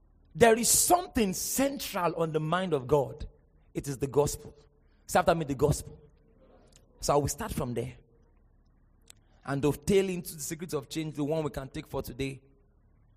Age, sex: 30-49, male